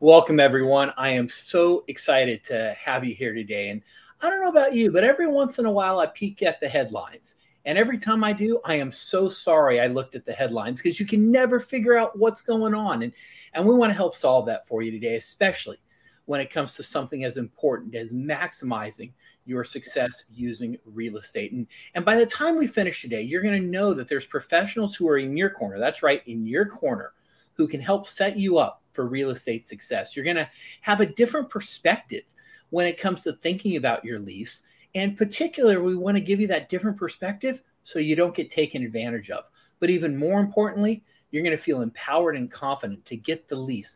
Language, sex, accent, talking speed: English, male, American, 215 wpm